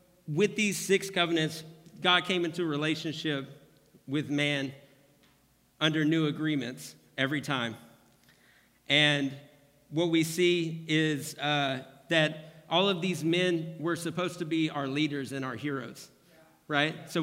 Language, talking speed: English, 130 wpm